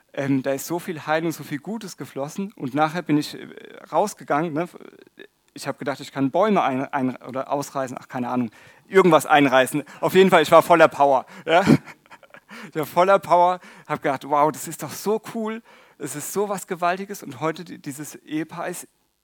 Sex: male